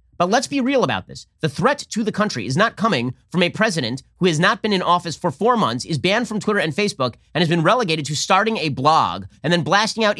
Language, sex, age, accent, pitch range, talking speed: English, male, 30-49, American, 130-200 Hz, 260 wpm